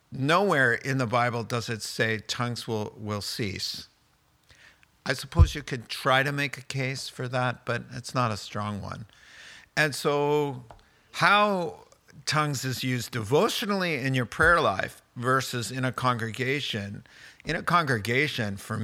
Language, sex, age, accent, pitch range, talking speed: English, male, 50-69, American, 110-140 Hz, 150 wpm